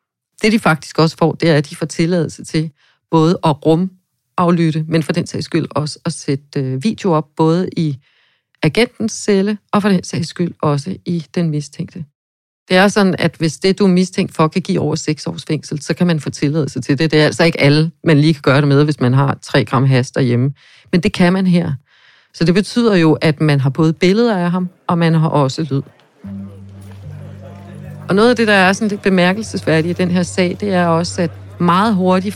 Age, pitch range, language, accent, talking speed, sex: 40-59, 145-185 Hz, Danish, native, 225 wpm, female